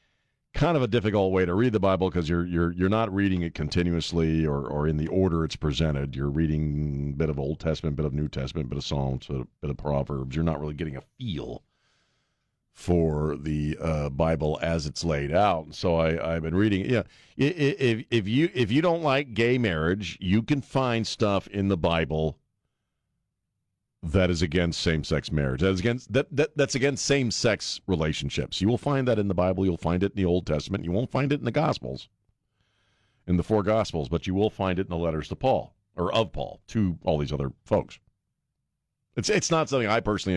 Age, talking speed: 50-69, 215 wpm